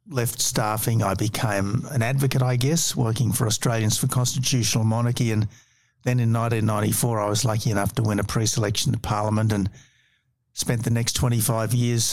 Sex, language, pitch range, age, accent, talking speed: male, English, 110-130 Hz, 60-79, Australian, 170 wpm